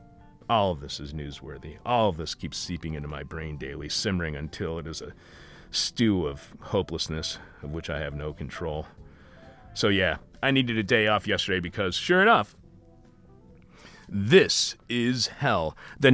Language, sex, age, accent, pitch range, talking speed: English, male, 40-59, American, 80-105 Hz, 160 wpm